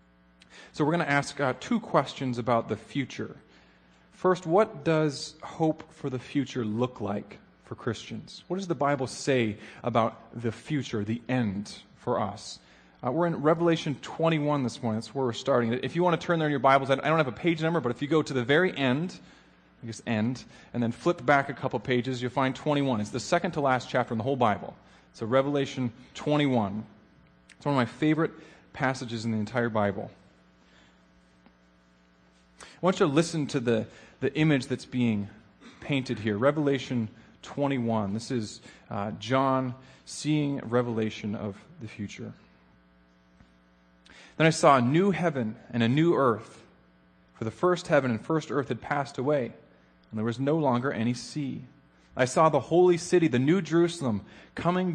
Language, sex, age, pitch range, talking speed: English, male, 30-49, 105-145 Hz, 180 wpm